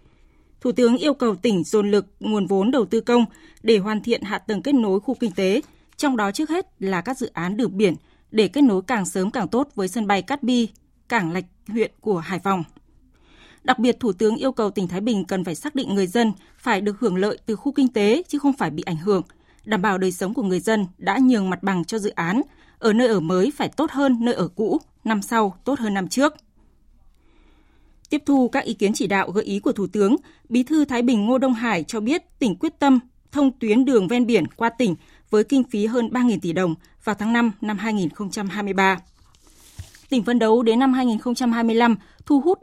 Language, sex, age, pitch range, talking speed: Vietnamese, female, 20-39, 195-255 Hz, 225 wpm